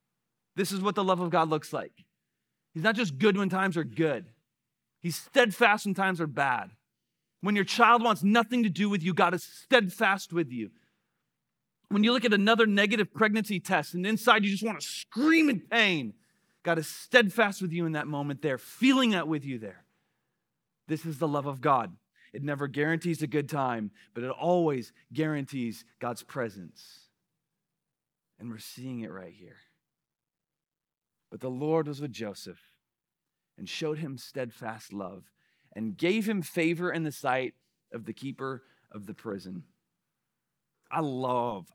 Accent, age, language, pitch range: American, 30-49, English, 145-205 Hz